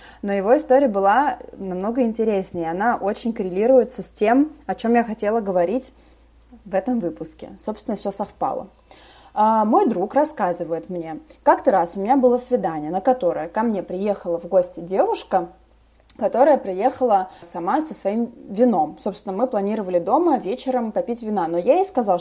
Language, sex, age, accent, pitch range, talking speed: Russian, female, 20-39, native, 190-250 Hz, 155 wpm